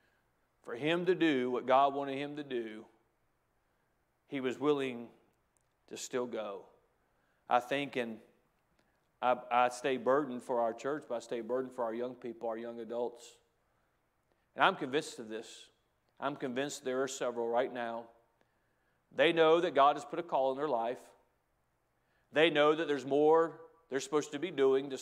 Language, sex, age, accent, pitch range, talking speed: English, male, 40-59, American, 125-160 Hz, 170 wpm